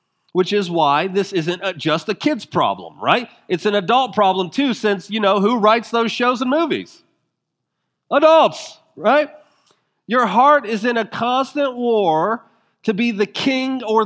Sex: male